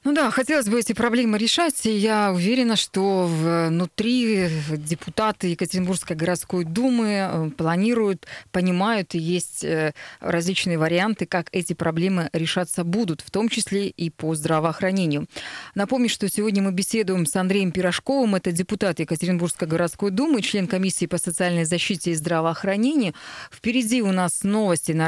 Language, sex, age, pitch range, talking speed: Russian, female, 20-39, 170-210 Hz, 135 wpm